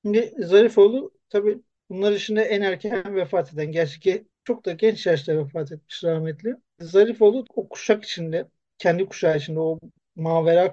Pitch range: 170-210 Hz